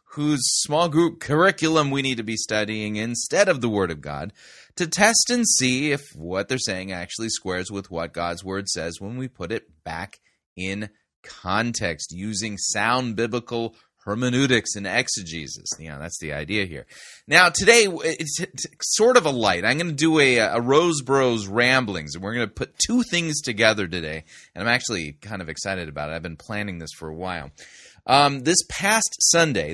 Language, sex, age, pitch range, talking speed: English, male, 30-49, 95-140 Hz, 185 wpm